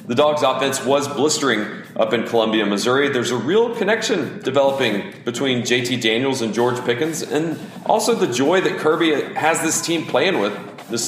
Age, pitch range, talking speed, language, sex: 40-59, 110-160 Hz, 175 wpm, English, male